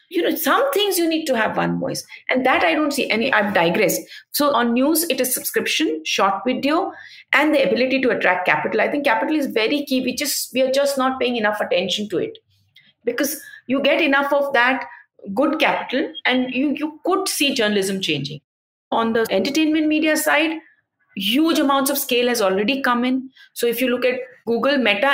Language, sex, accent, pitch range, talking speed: English, female, Indian, 210-285 Hz, 200 wpm